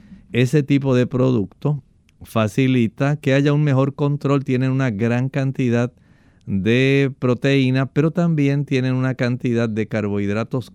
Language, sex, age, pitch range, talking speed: Spanish, male, 50-69, 110-135 Hz, 130 wpm